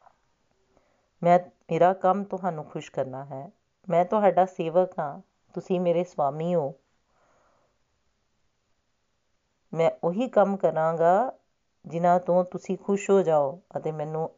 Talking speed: 115 wpm